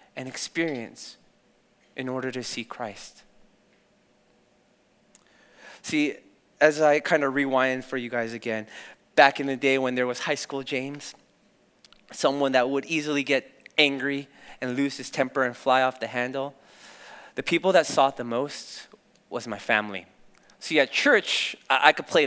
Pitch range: 135-200 Hz